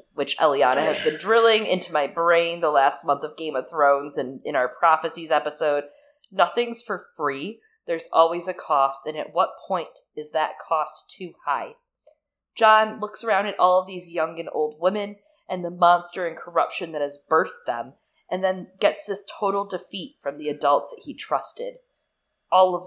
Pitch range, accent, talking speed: 150-205 Hz, American, 185 wpm